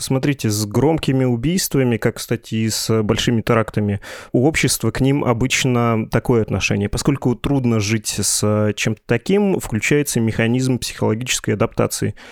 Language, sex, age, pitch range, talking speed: Russian, male, 20-39, 110-130 Hz, 130 wpm